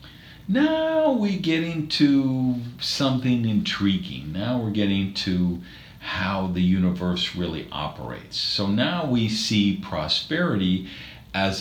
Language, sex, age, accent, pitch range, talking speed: English, male, 50-69, American, 95-135 Hz, 110 wpm